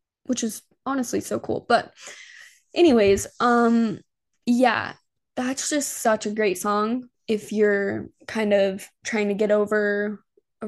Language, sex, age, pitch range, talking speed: English, female, 10-29, 210-260 Hz, 135 wpm